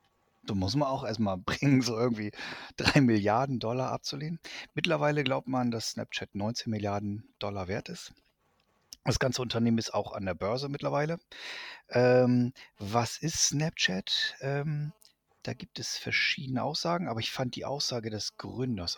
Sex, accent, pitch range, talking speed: male, German, 105-145 Hz, 155 wpm